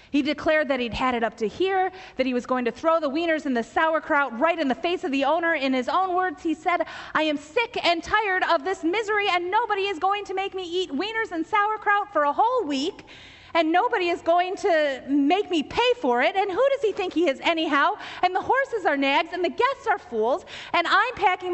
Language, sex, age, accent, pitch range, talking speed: English, female, 30-49, American, 215-340 Hz, 240 wpm